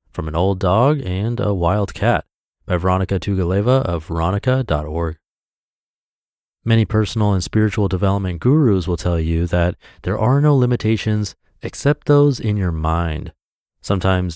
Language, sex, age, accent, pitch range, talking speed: English, male, 30-49, American, 90-115 Hz, 140 wpm